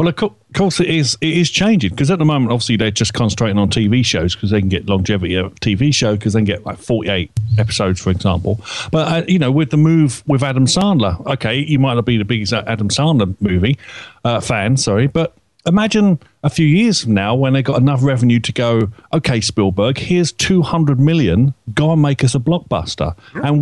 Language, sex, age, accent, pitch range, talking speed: English, male, 40-59, British, 110-155 Hz, 215 wpm